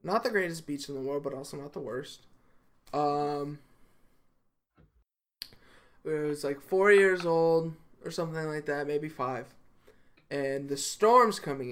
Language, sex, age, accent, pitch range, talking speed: English, male, 20-39, American, 145-190 Hz, 150 wpm